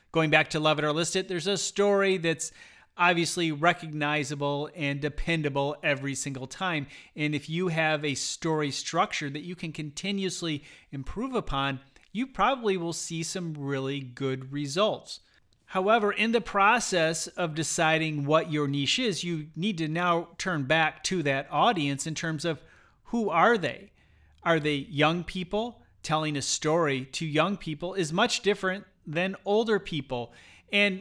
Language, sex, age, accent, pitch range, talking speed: English, male, 30-49, American, 150-190 Hz, 160 wpm